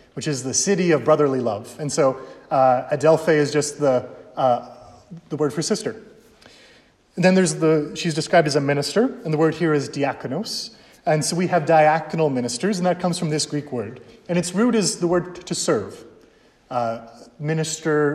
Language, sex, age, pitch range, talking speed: English, male, 30-49, 145-175 Hz, 190 wpm